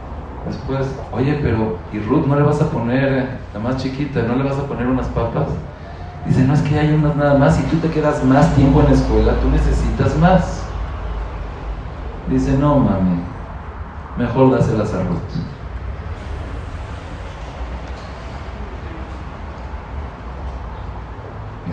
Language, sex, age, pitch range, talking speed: English, male, 40-59, 85-130 Hz, 135 wpm